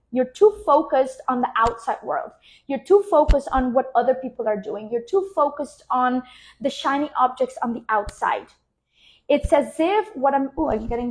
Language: English